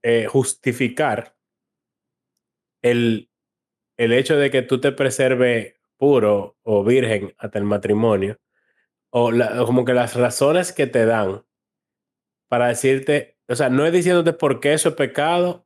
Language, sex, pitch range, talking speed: Spanish, male, 115-145 Hz, 145 wpm